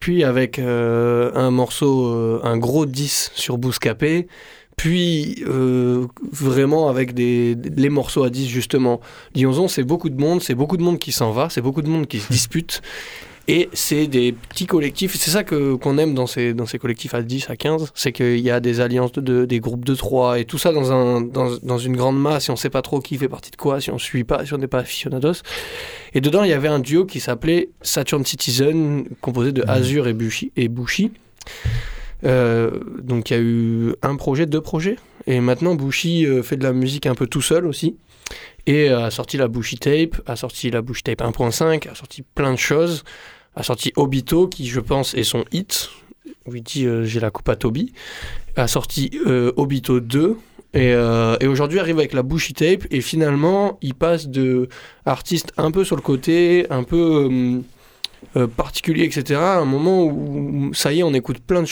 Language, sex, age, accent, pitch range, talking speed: French, male, 20-39, French, 125-160 Hz, 210 wpm